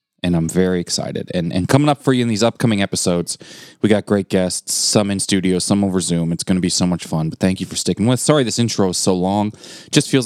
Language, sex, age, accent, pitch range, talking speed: English, male, 20-39, American, 90-120 Hz, 275 wpm